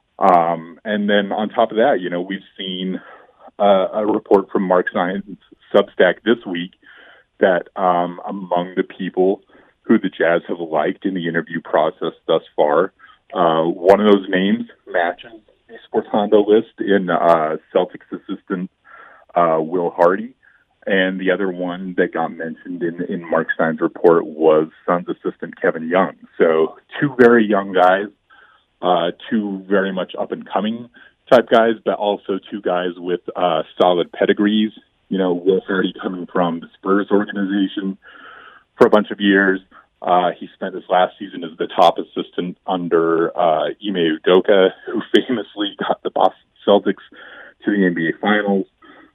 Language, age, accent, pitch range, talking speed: English, 30-49, American, 90-100 Hz, 155 wpm